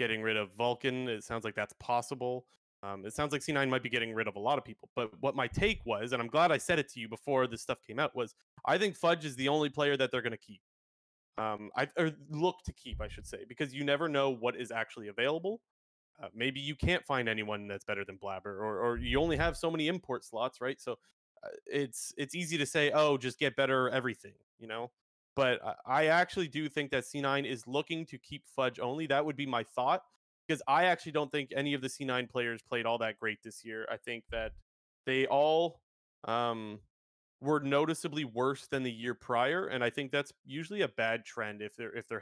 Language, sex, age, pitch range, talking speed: English, male, 30-49, 110-145 Hz, 235 wpm